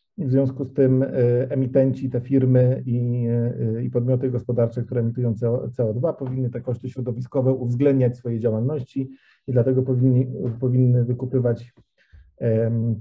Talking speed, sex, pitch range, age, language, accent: 145 wpm, male, 125-150 Hz, 50-69, English, Polish